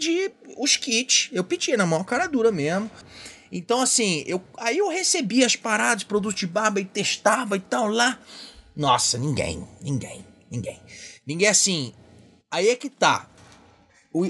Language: Portuguese